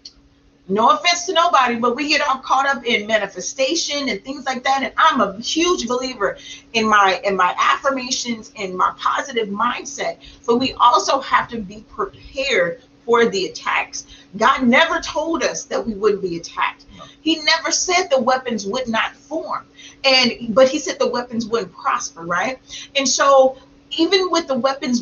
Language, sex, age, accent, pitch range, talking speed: English, female, 40-59, American, 215-300 Hz, 175 wpm